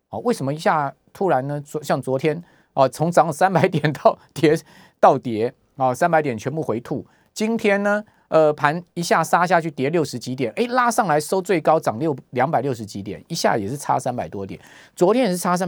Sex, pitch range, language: male, 120-165 Hz, Chinese